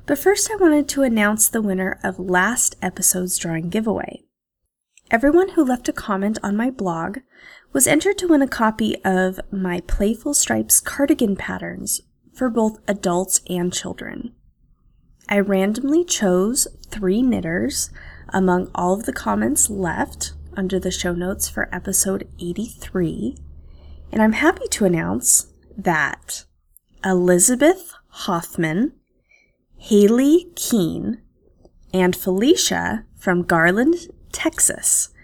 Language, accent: English, American